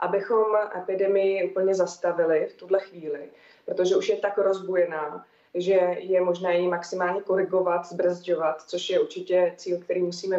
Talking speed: 145 wpm